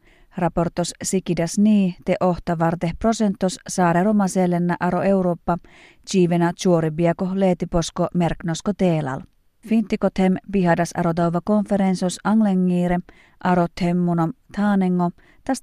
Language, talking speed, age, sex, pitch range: Finnish, 95 wpm, 30-49, female, 170-200 Hz